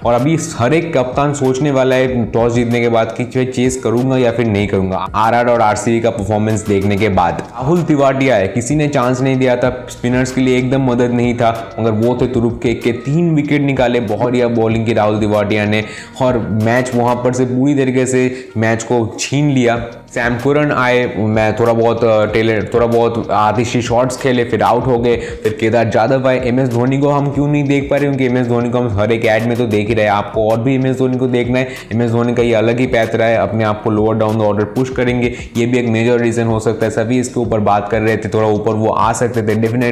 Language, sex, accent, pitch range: Hindi, male, native, 110-125 Hz